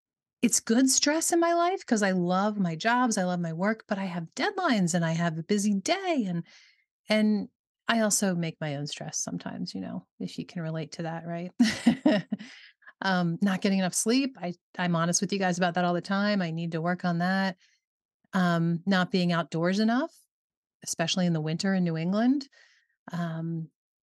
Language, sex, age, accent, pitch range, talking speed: English, female, 30-49, American, 165-205 Hz, 195 wpm